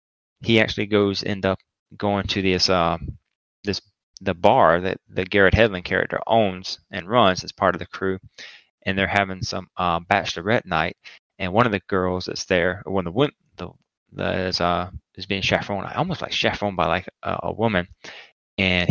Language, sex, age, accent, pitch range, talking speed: English, male, 20-39, American, 90-110 Hz, 185 wpm